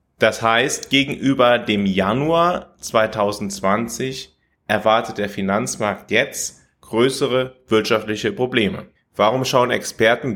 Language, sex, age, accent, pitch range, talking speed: German, male, 30-49, German, 100-130 Hz, 95 wpm